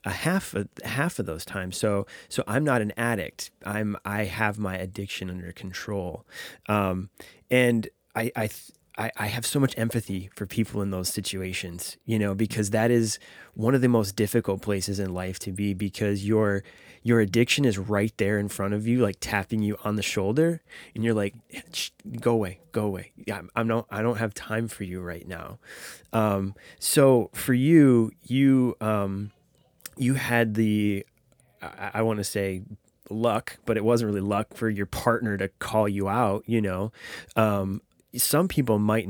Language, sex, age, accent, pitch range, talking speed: English, male, 20-39, American, 100-115 Hz, 180 wpm